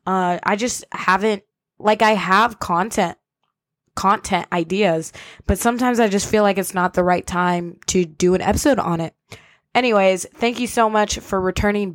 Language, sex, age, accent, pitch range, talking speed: English, female, 20-39, American, 175-215 Hz, 170 wpm